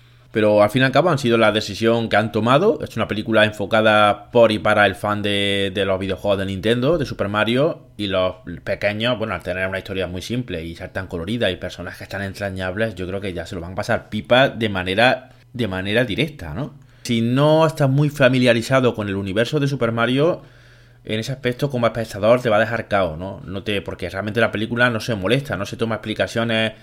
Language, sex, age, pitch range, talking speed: Spanish, male, 20-39, 100-120 Hz, 225 wpm